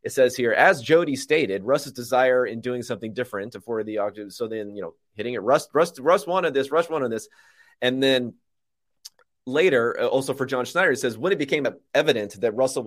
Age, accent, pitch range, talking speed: 30-49, American, 120-185 Hz, 205 wpm